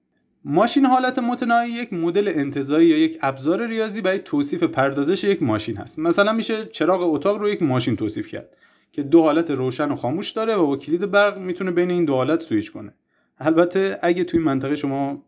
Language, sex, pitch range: Persian, male, 140-215 Hz